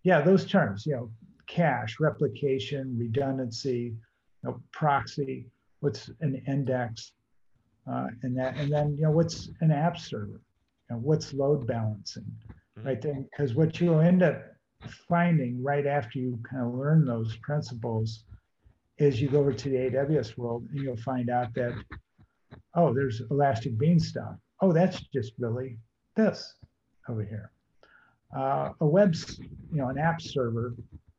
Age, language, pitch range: 50-69, English, 120-150 Hz